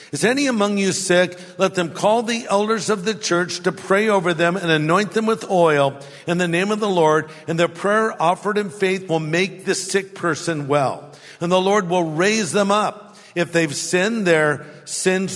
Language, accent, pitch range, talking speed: English, American, 145-190 Hz, 205 wpm